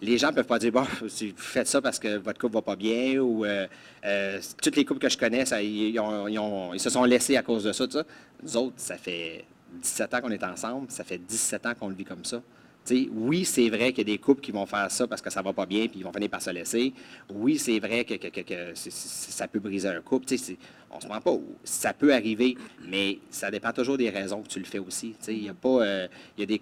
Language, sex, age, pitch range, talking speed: French, male, 30-49, 100-125 Hz, 275 wpm